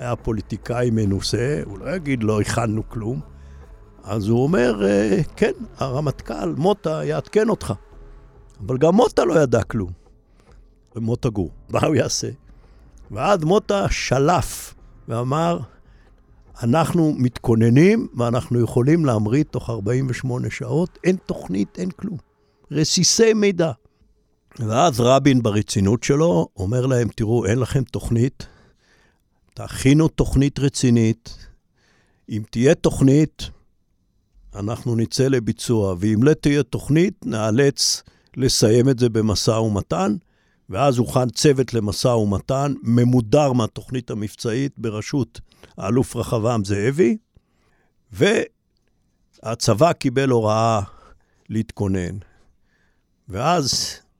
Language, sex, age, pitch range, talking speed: Hebrew, male, 60-79, 110-140 Hz, 100 wpm